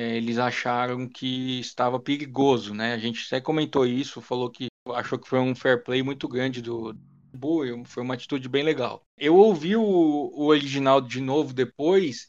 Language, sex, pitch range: Portuguese, male, 125-160 Hz